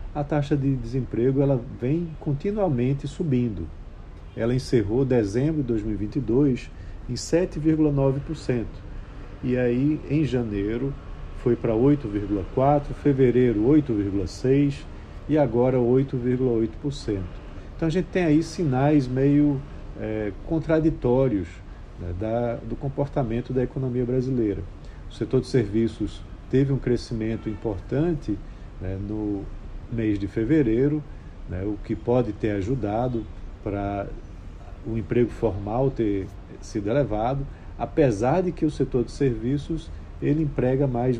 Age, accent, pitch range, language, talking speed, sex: 40-59, Brazilian, 100-135 Hz, Portuguese, 110 wpm, male